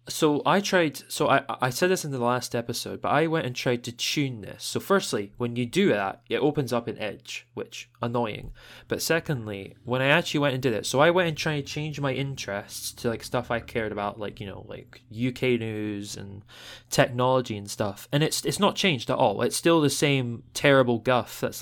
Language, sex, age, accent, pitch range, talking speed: English, male, 20-39, British, 110-140 Hz, 225 wpm